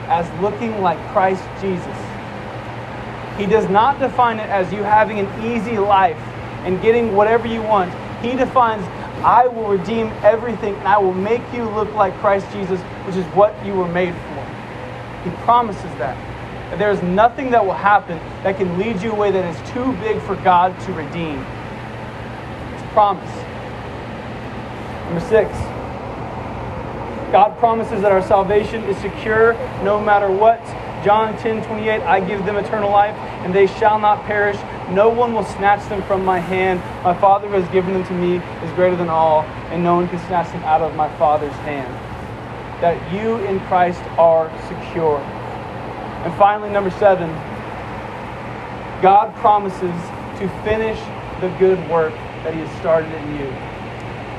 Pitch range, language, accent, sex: 160-210 Hz, English, American, male